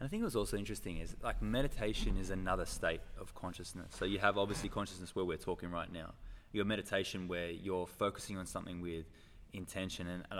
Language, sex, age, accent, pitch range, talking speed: English, male, 20-39, Australian, 85-105 Hz, 200 wpm